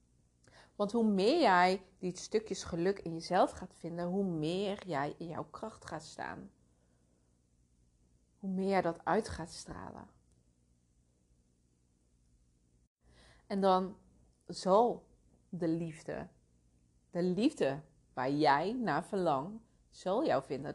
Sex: female